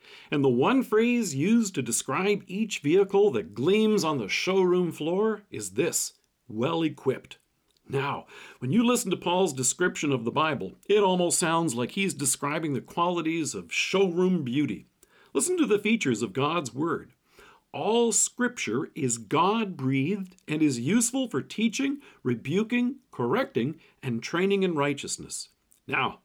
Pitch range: 140-200 Hz